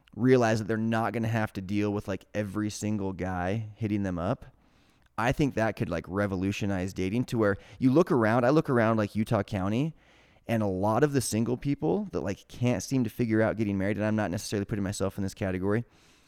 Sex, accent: male, American